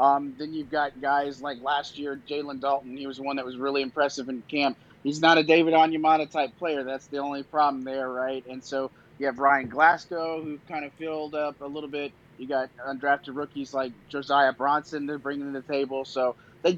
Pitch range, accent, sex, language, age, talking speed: 135-155 Hz, American, male, English, 30-49, 215 wpm